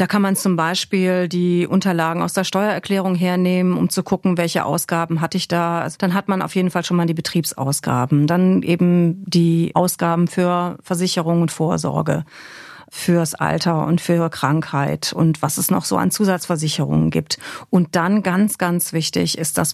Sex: female